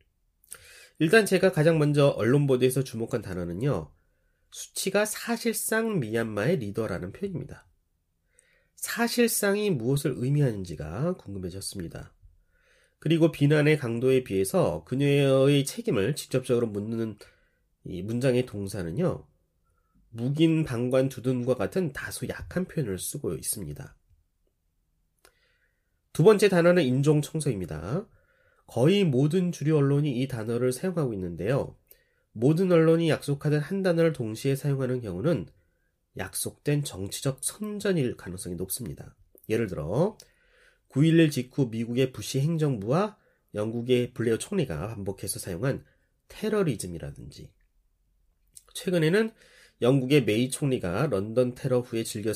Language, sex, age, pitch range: Korean, male, 30-49, 105-165 Hz